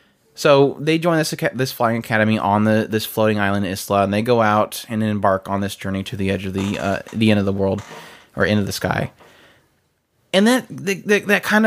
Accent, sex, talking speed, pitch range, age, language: American, male, 220 wpm, 100-120 Hz, 20-39, English